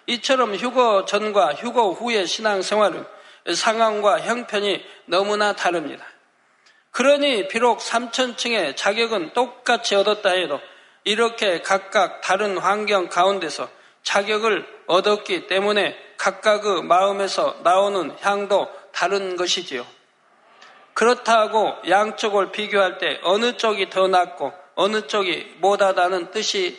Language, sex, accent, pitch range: Korean, male, native, 195-235 Hz